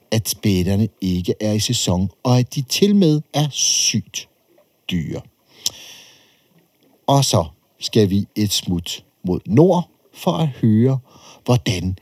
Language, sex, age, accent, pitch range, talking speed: Danish, male, 60-79, native, 105-160 Hz, 130 wpm